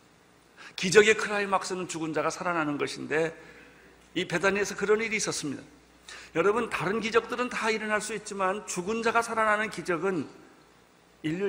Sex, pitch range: male, 140-210 Hz